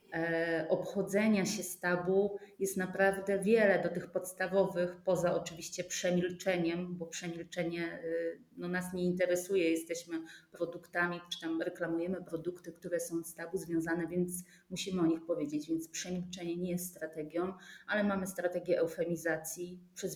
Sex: female